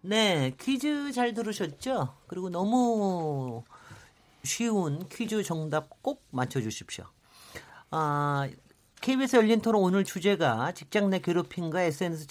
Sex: male